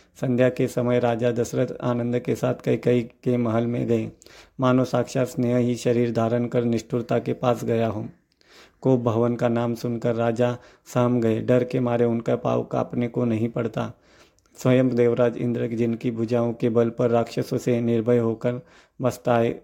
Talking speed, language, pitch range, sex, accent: 170 wpm, Hindi, 115-125 Hz, male, native